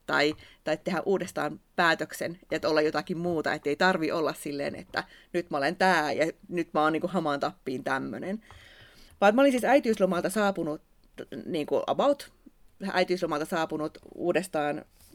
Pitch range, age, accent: 150-195 Hz, 30-49, native